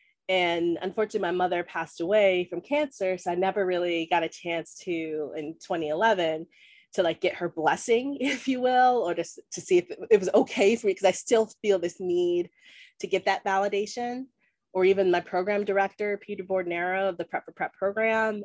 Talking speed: 190 wpm